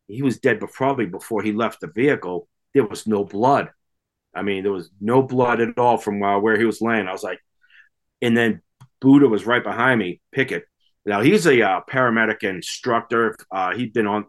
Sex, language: male, English